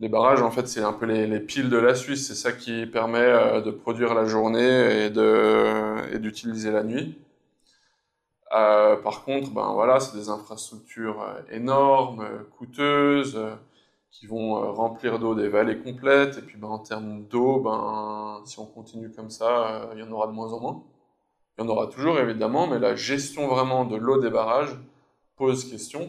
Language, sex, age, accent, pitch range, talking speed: French, male, 20-39, French, 110-130 Hz, 185 wpm